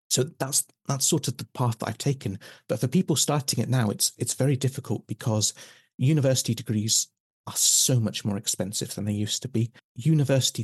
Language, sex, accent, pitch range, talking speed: English, male, British, 105-125 Hz, 190 wpm